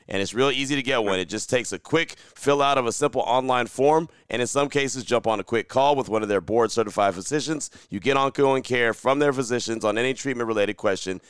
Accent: American